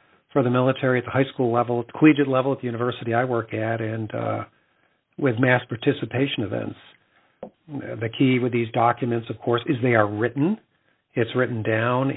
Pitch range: 115-130 Hz